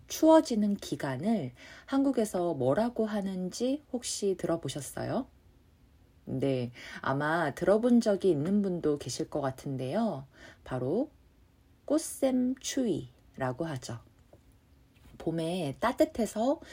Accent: native